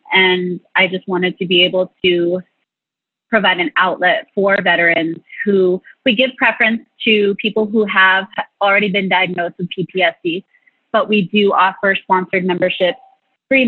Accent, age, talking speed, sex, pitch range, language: American, 20-39, 145 wpm, female, 180-210 Hz, English